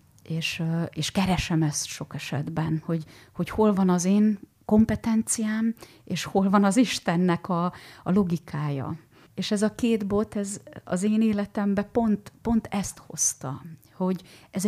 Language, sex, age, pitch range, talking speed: Hungarian, female, 30-49, 165-205 Hz, 145 wpm